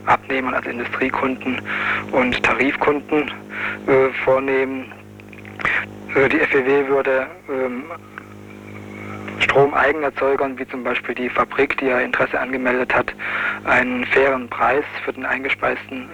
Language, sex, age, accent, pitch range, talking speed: German, male, 50-69, German, 120-140 Hz, 110 wpm